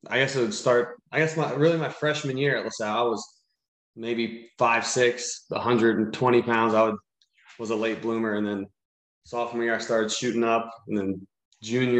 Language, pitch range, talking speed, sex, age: English, 105-115 Hz, 195 wpm, male, 20-39